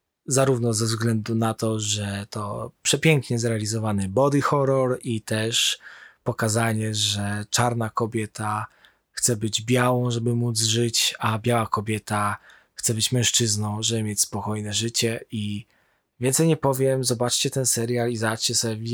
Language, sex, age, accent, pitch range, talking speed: Polish, male, 20-39, native, 110-125 Hz, 135 wpm